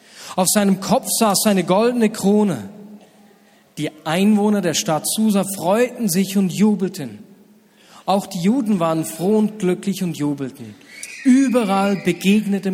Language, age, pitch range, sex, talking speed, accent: German, 40-59, 180-220 Hz, male, 125 wpm, German